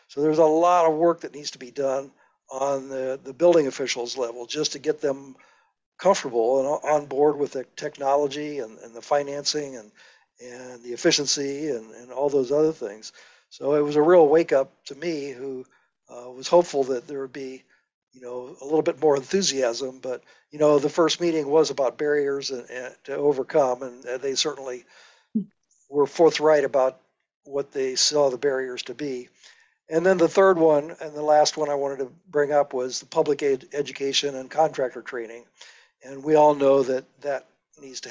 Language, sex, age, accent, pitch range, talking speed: English, male, 60-79, American, 130-150 Hz, 190 wpm